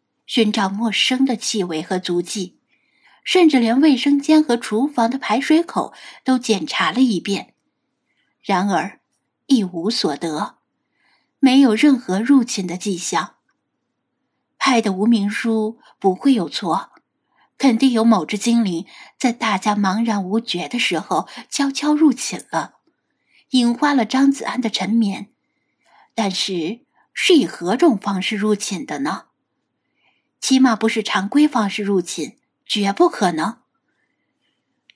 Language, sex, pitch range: Chinese, female, 210-285 Hz